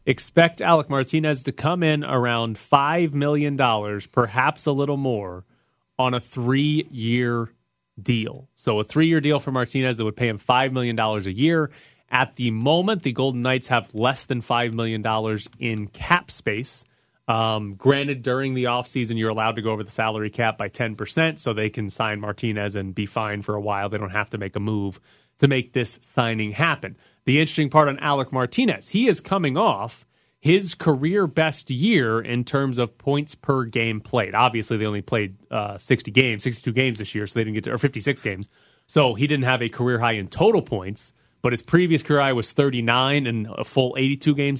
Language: English